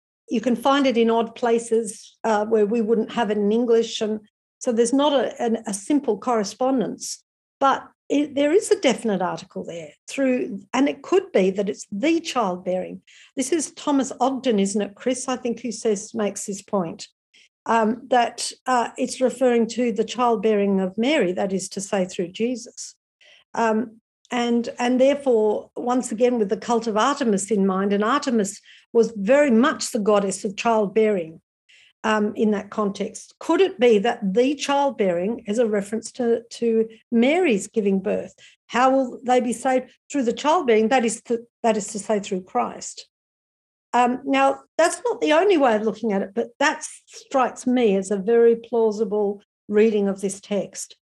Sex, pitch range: female, 210-255 Hz